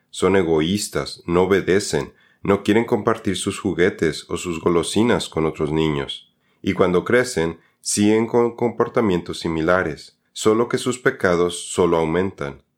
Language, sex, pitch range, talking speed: Spanish, male, 85-115 Hz, 130 wpm